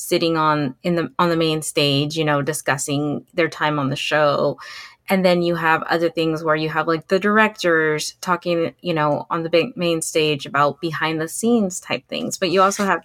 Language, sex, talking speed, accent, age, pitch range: English, female, 210 wpm, American, 20-39, 150-185 Hz